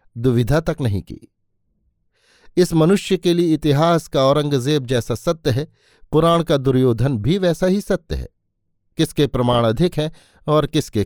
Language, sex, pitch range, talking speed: Hindi, male, 105-160 Hz, 150 wpm